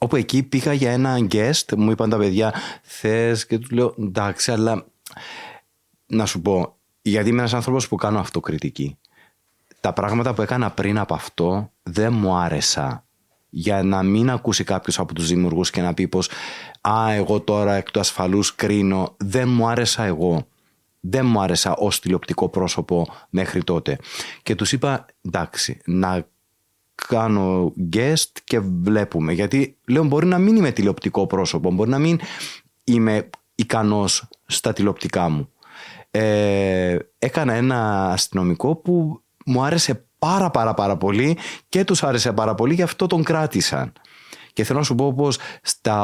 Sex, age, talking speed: male, 30-49, 155 wpm